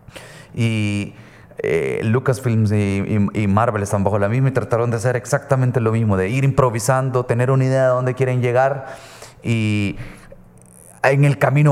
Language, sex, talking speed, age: Spanish, male, 165 wpm, 30-49